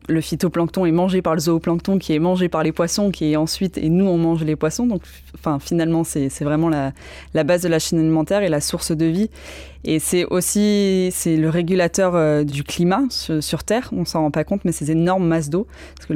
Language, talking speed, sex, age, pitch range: French, 240 wpm, female, 20-39, 150-180 Hz